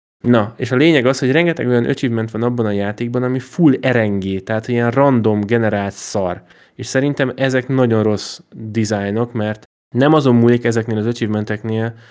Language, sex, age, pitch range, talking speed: Hungarian, male, 10-29, 105-130 Hz, 170 wpm